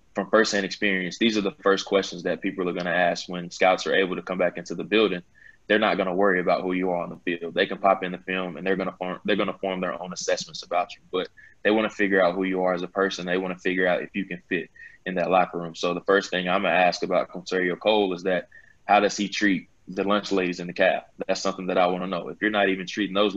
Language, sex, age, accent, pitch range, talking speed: English, male, 20-39, American, 90-95 Hz, 300 wpm